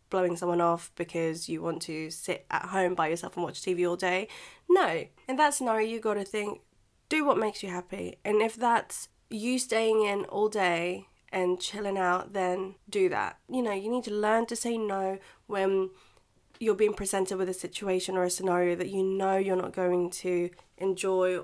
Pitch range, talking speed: 180-215 Hz, 200 wpm